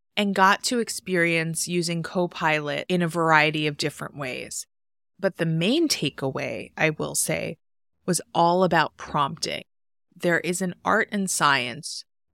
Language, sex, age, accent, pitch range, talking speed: English, female, 20-39, American, 155-210 Hz, 140 wpm